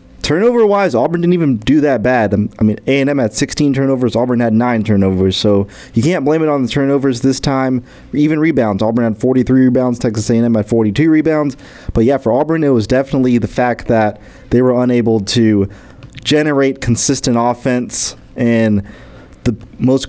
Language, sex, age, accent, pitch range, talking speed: English, male, 30-49, American, 115-140 Hz, 175 wpm